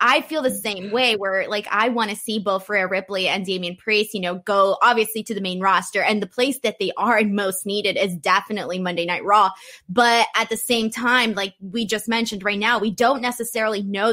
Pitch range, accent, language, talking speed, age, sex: 195-240 Hz, American, English, 225 wpm, 20-39, female